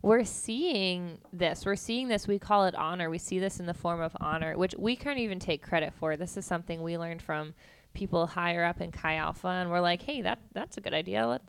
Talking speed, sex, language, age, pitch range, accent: 245 wpm, female, English, 20-39, 175-205 Hz, American